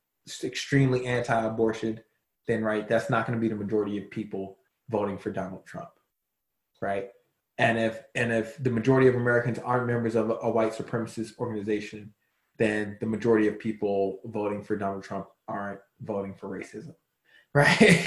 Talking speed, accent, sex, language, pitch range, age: 160 wpm, American, male, English, 110-140 Hz, 20-39